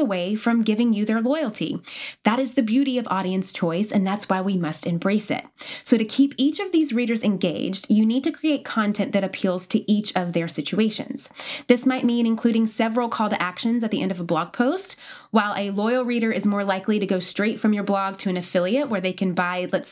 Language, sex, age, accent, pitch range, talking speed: English, female, 20-39, American, 190-260 Hz, 230 wpm